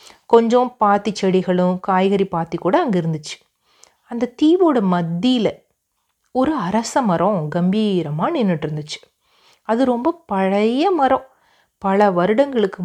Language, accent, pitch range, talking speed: Tamil, native, 180-235 Hz, 105 wpm